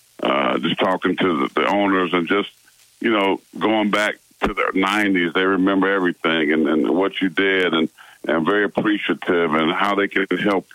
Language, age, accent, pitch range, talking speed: English, 50-69, American, 90-105 Hz, 180 wpm